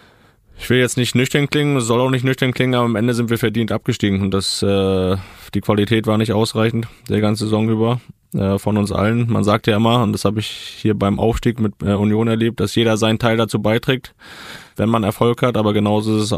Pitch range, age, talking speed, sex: 100-115 Hz, 20-39, 225 wpm, male